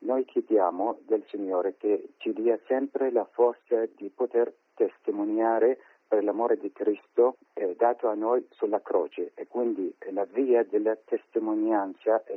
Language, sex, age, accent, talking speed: Italian, male, 50-69, native, 145 wpm